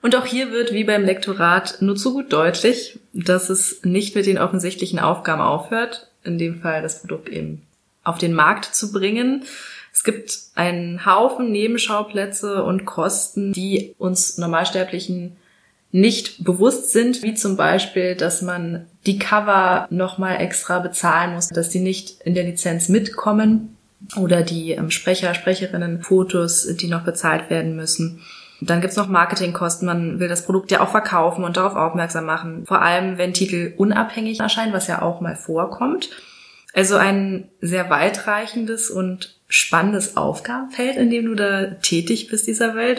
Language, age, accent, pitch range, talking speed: German, 20-39, German, 170-210 Hz, 160 wpm